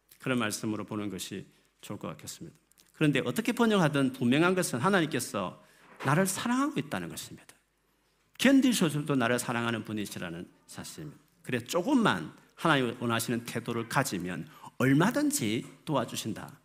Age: 40-59